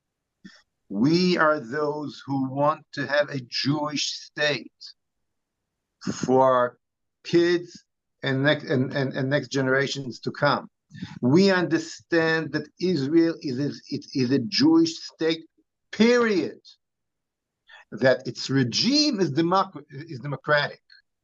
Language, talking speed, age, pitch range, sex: English, 115 wpm, 50-69, 145-195 Hz, male